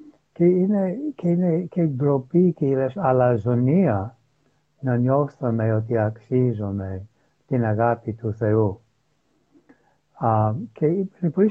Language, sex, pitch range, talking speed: Greek, male, 115-160 Hz, 95 wpm